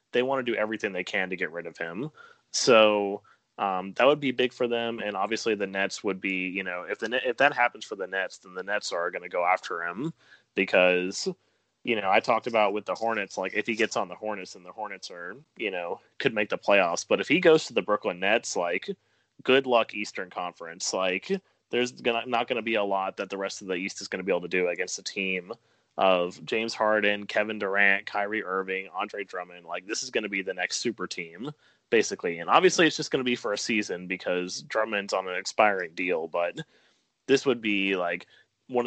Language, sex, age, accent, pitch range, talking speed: English, male, 20-39, American, 95-120 Hz, 235 wpm